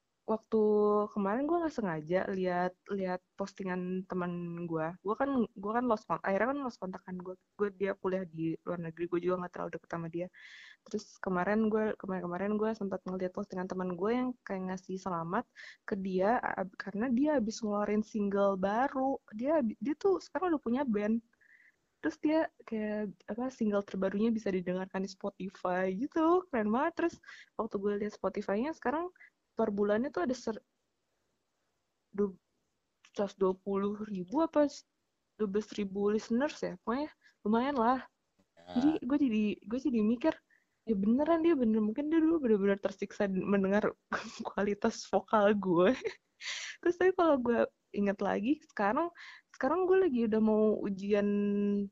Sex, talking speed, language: female, 150 wpm, Indonesian